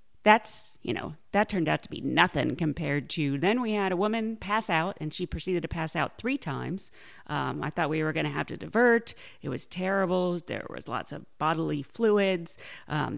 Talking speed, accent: 210 wpm, American